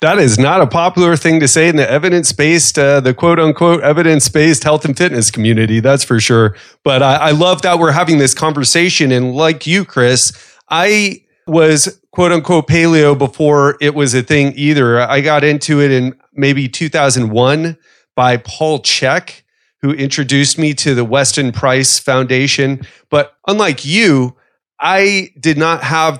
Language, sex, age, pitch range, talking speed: English, male, 30-49, 125-155 Hz, 160 wpm